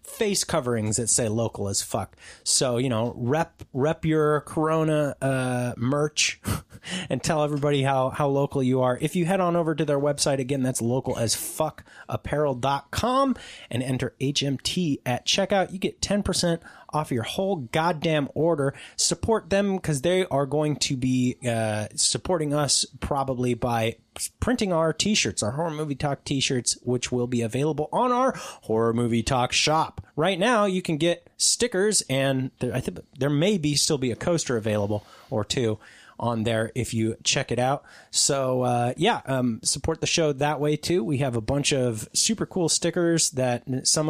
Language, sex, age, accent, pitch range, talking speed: English, male, 30-49, American, 120-160 Hz, 170 wpm